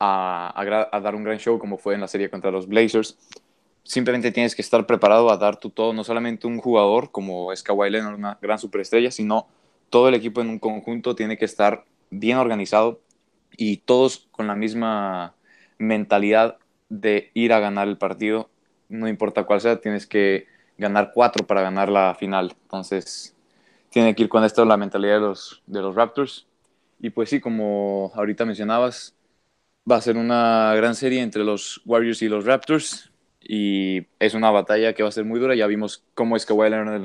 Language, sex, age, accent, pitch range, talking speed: Spanish, male, 20-39, Mexican, 105-115 Hz, 190 wpm